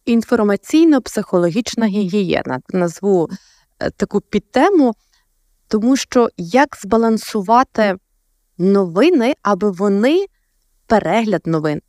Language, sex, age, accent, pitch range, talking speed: Ukrainian, female, 20-39, native, 180-215 Hz, 70 wpm